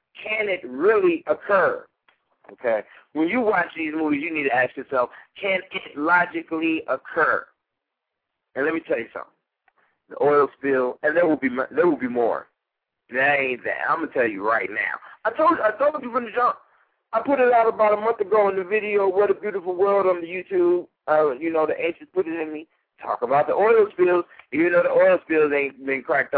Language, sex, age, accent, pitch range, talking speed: English, male, 50-69, American, 130-190 Hz, 215 wpm